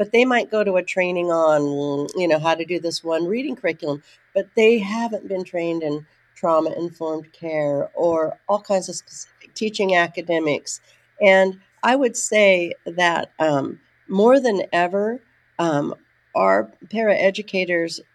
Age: 50-69